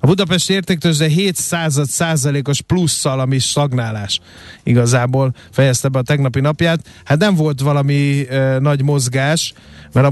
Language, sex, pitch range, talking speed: Hungarian, male, 130-150 Hz, 135 wpm